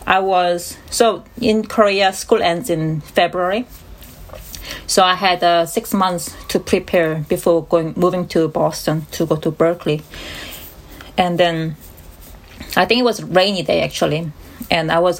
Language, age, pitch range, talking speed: English, 30-49, 155-195 Hz, 155 wpm